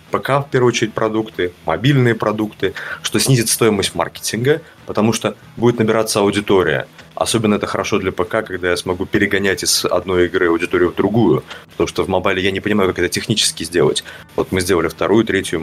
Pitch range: 90-120 Hz